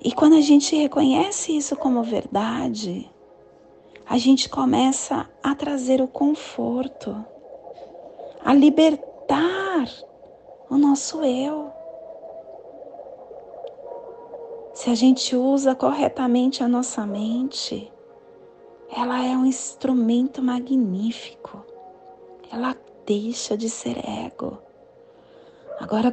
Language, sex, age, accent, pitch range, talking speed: Portuguese, female, 30-49, Brazilian, 255-325 Hz, 90 wpm